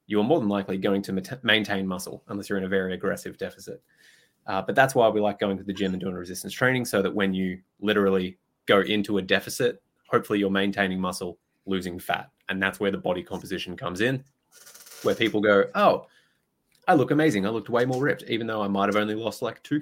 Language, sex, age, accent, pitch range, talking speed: English, male, 20-39, Australian, 95-110 Hz, 220 wpm